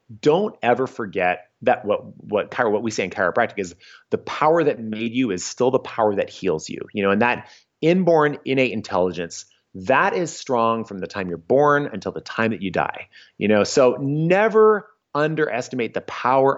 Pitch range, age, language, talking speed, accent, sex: 110-145 Hz, 30-49, English, 190 wpm, American, male